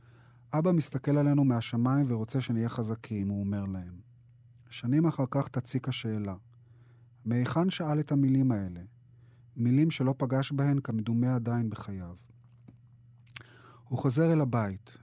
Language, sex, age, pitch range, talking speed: Hebrew, male, 30-49, 115-130 Hz, 125 wpm